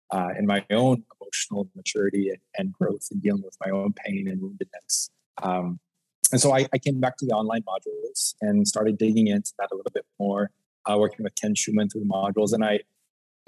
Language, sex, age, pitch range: English, male, 20-39, 110-155 Hz